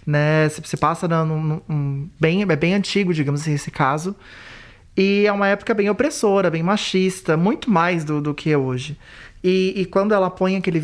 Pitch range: 155-195 Hz